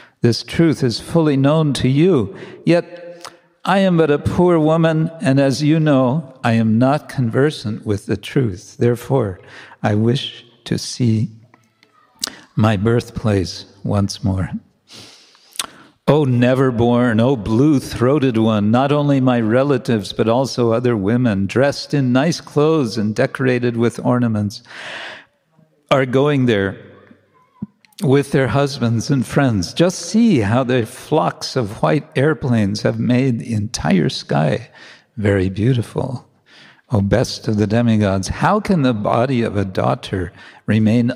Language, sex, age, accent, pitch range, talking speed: English, male, 60-79, American, 110-140 Hz, 135 wpm